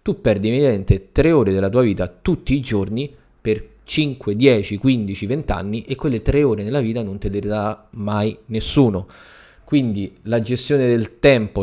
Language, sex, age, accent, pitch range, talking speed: Italian, male, 20-39, native, 100-120 Hz, 170 wpm